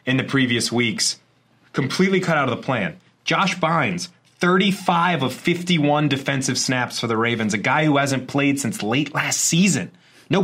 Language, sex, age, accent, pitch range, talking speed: English, male, 30-49, American, 125-165 Hz, 170 wpm